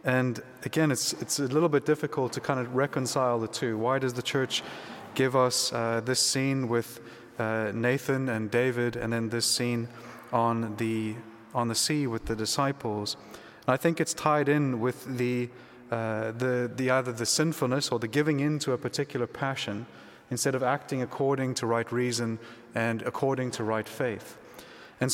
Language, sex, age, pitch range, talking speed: English, male, 30-49, 120-140 Hz, 180 wpm